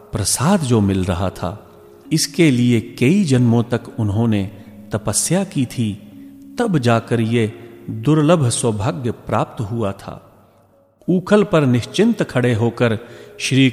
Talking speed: 115 wpm